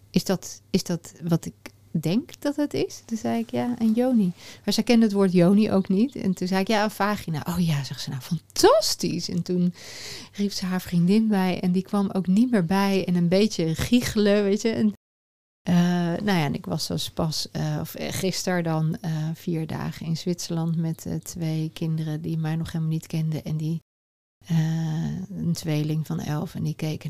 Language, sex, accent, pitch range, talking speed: Dutch, female, Dutch, 155-190 Hz, 210 wpm